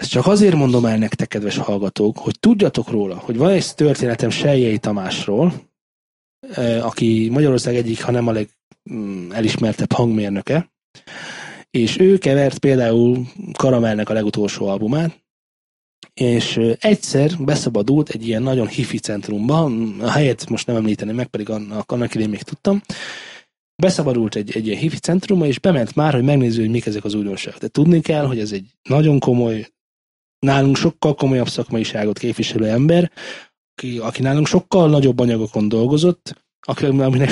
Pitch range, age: 110-150 Hz, 20-39